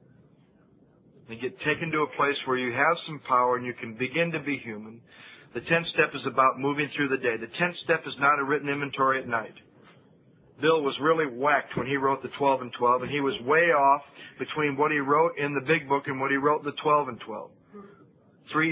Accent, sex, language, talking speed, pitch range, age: American, male, English, 230 wpm, 140-170 Hz, 50-69